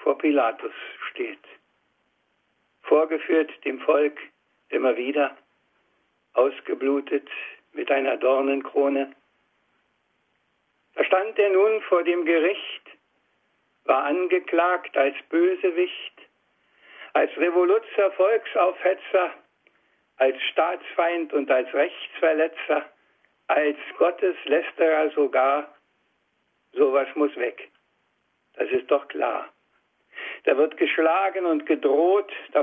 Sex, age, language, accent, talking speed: male, 60-79, German, German, 85 wpm